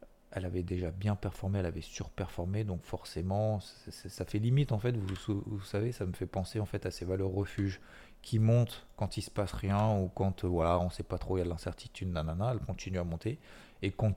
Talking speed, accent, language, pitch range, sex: 245 wpm, French, French, 90-105 Hz, male